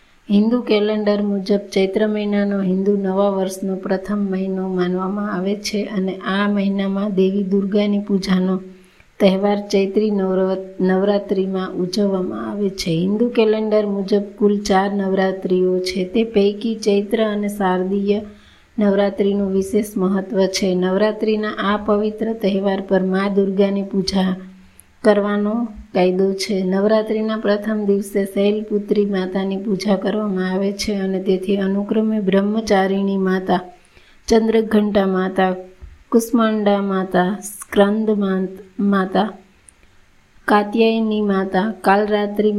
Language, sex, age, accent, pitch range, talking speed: Gujarati, female, 30-49, native, 190-210 Hz, 80 wpm